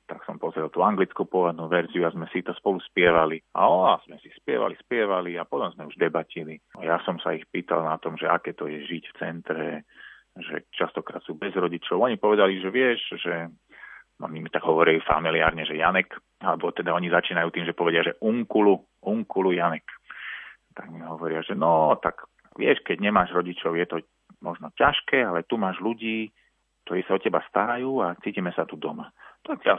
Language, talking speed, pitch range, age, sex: Slovak, 195 wpm, 85-100 Hz, 30-49, male